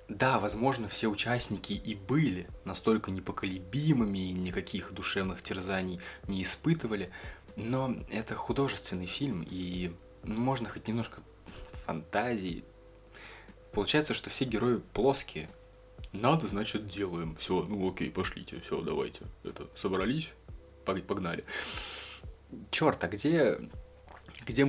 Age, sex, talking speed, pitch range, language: 20-39, male, 105 wpm, 90-115 Hz, Russian